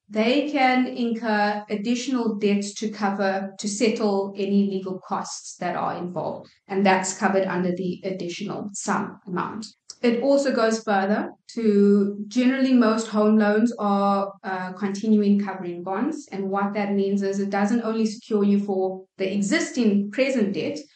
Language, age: English, 20-39